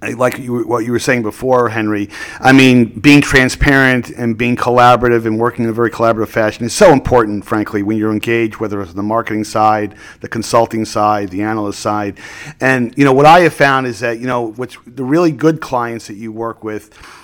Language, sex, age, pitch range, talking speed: English, male, 40-59, 110-130 Hz, 210 wpm